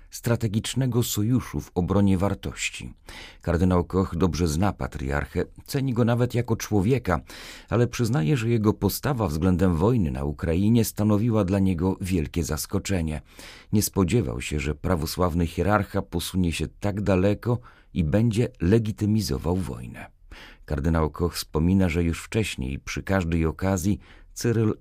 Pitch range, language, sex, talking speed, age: 85-110 Hz, Polish, male, 130 wpm, 40-59